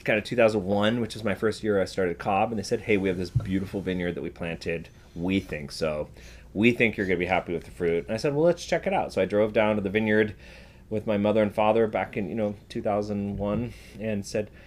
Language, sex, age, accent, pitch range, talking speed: English, male, 30-49, American, 90-115 Hz, 255 wpm